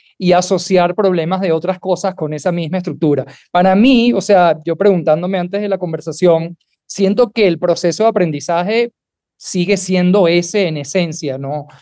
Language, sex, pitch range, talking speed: Spanish, male, 170-205 Hz, 160 wpm